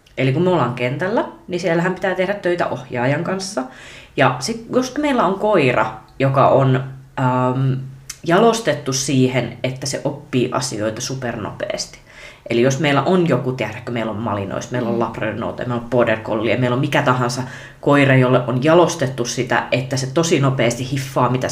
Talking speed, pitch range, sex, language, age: 160 wpm, 125-170 Hz, female, Finnish, 30-49